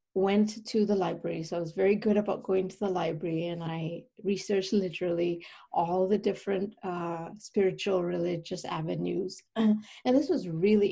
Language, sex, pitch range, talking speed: English, female, 180-215 Hz, 160 wpm